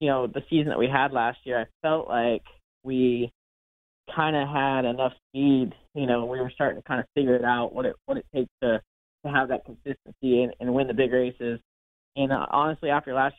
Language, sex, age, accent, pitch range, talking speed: English, male, 20-39, American, 120-135 Hz, 225 wpm